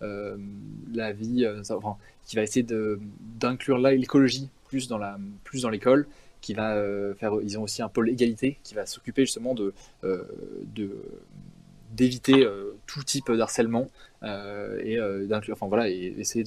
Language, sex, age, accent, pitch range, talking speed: French, male, 20-39, French, 105-130 Hz, 170 wpm